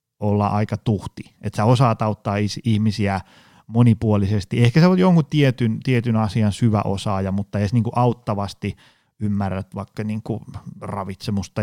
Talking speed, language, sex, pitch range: 135 wpm, Finnish, male, 100-125 Hz